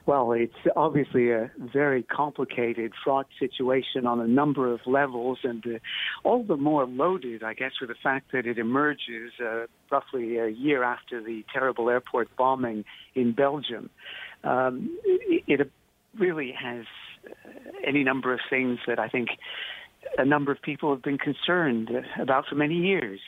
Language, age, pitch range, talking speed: English, 60-79, 120-140 Hz, 155 wpm